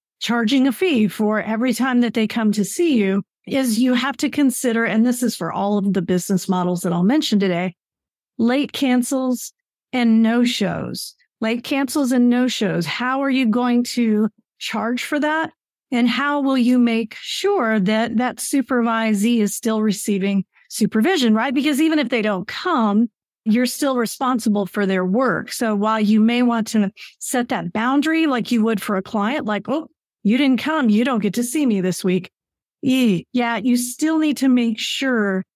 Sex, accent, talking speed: female, American, 180 wpm